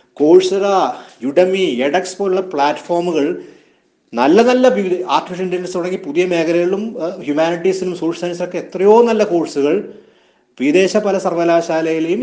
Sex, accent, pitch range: male, native, 135-180 Hz